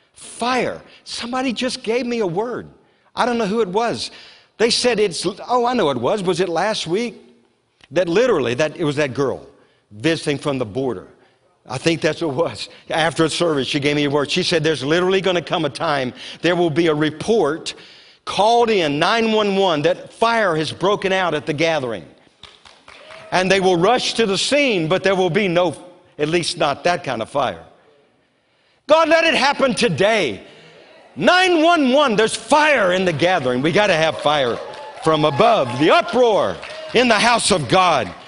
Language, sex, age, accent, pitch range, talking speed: English, male, 50-69, American, 145-215 Hz, 190 wpm